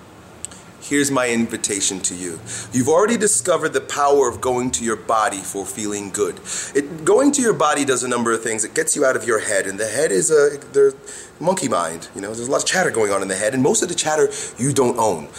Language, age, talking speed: English, 30-49, 240 wpm